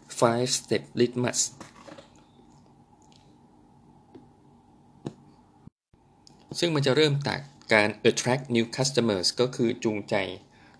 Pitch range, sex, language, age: 115-140 Hz, male, Thai, 20-39